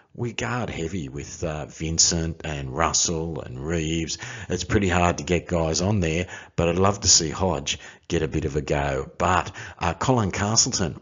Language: English